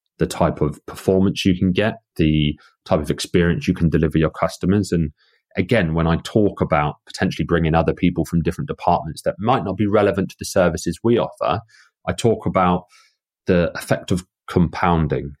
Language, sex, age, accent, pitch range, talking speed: English, male, 30-49, British, 80-95 Hz, 180 wpm